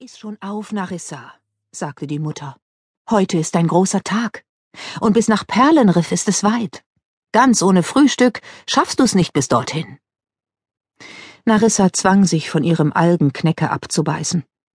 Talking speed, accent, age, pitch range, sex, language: 140 wpm, German, 50-69, 145-215 Hz, female, German